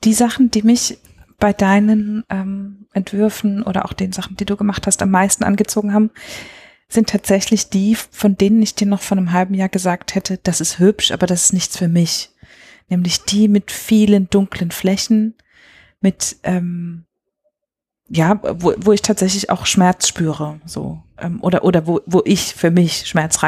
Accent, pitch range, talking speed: German, 175-210 Hz, 175 wpm